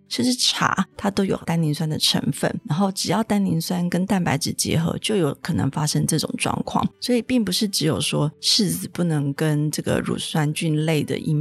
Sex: female